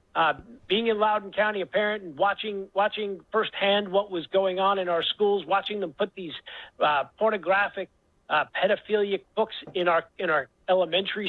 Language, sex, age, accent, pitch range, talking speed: English, male, 50-69, American, 170-210 Hz, 170 wpm